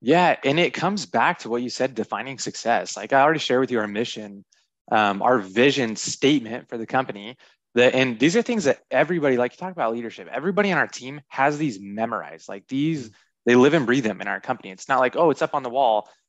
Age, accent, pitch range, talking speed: 20-39, American, 110-130 Hz, 235 wpm